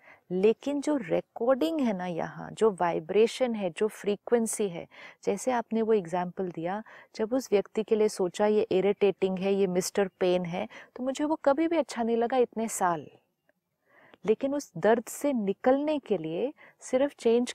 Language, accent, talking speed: Hindi, native, 170 wpm